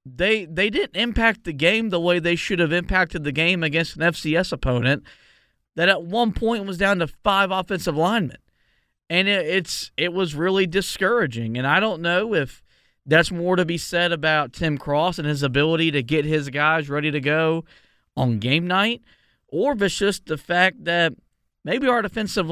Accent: American